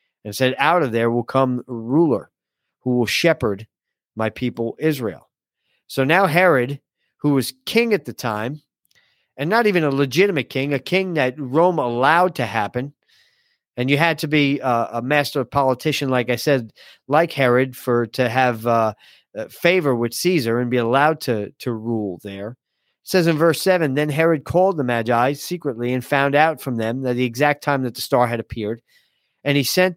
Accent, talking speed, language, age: American, 190 wpm, English, 40-59